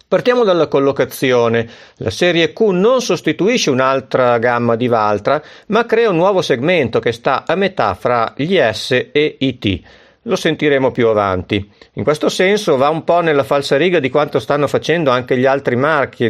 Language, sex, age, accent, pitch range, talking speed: Italian, male, 50-69, native, 115-155 Hz, 175 wpm